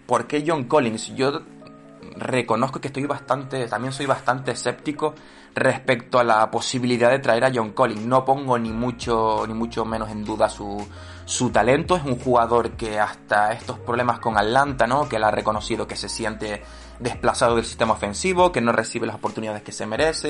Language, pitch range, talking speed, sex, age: Spanish, 110-125 Hz, 185 wpm, male, 20-39